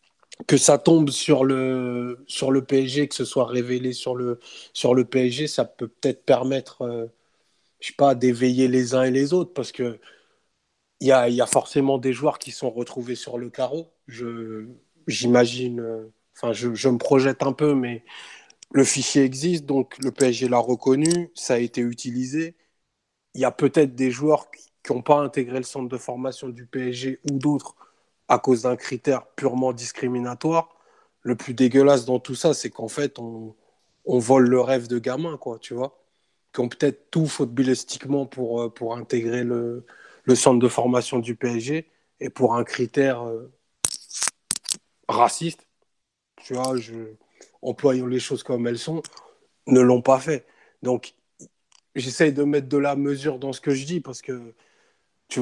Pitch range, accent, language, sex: 125-140 Hz, French, French, male